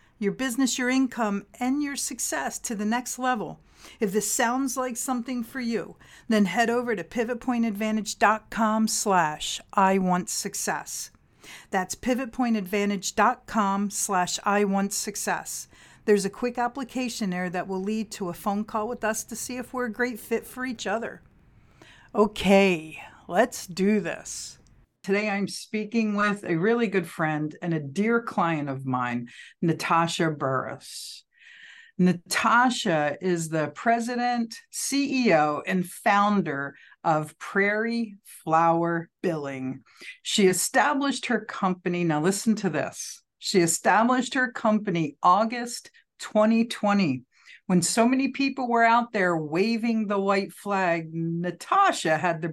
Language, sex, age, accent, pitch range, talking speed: English, female, 50-69, American, 180-240 Hz, 130 wpm